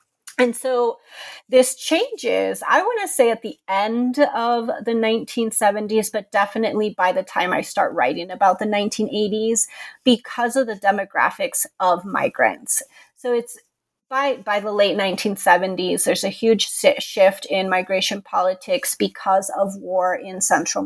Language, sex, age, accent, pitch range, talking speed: English, female, 30-49, American, 195-255 Hz, 145 wpm